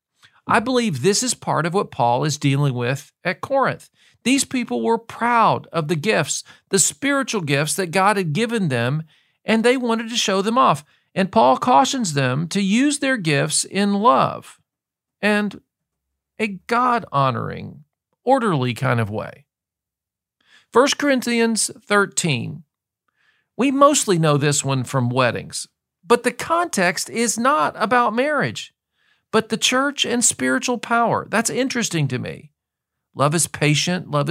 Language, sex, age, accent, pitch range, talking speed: English, male, 40-59, American, 150-235 Hz, 145 wpm